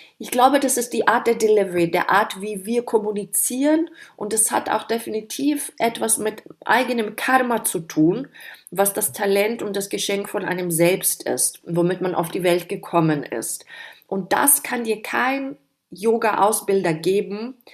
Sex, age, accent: female, 30-49, German